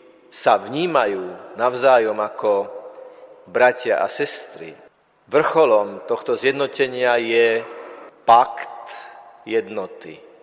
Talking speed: 75 wpm